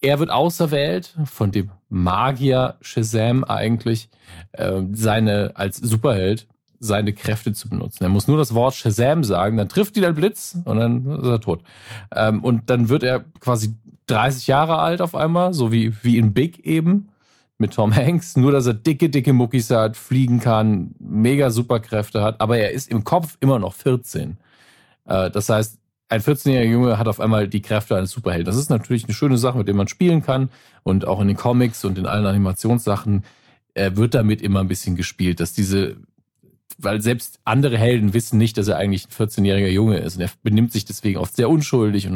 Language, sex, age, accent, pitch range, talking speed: German, male, 40-59, German, 105-130 Hz, 195 wpm